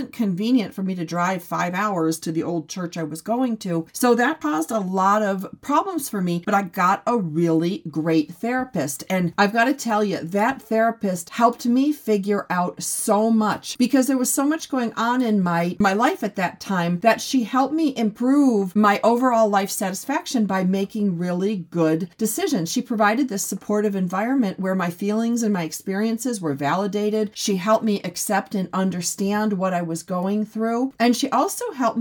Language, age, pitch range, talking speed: English, 40-59, 180-245 Hz, 190 wpm